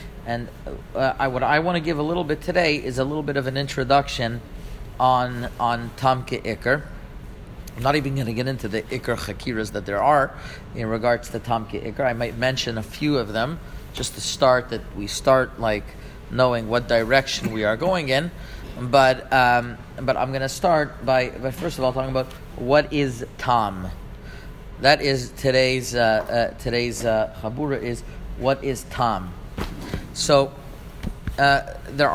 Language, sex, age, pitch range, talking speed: English, male, 40-59, 115-140 Hz, 175 wpm